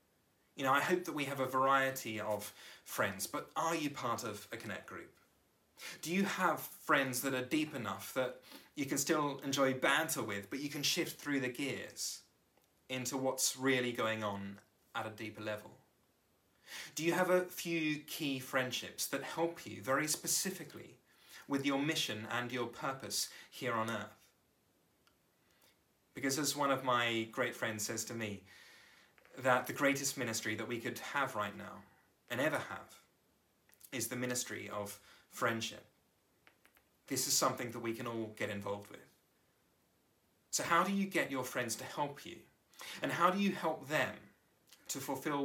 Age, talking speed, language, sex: 30-49, 170 wpm, English, male